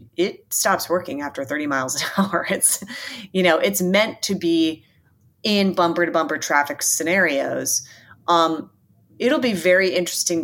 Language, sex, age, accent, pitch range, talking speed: English, female, 30-49, American, 145-180 Hz, 150 wpm